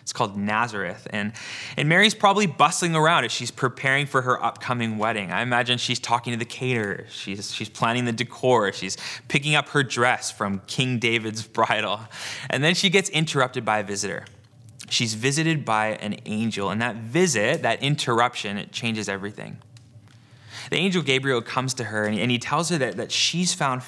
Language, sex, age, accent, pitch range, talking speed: English, male, 20-39, American, 115-145 Hz, 185 wpm